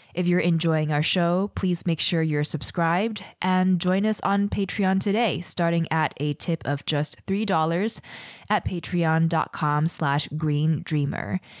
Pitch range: 160-190 Hz